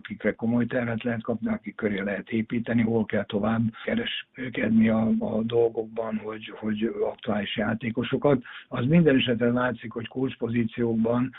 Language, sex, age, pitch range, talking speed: Hungarian, male, 60-79, 110-125 Hz, 140 wpm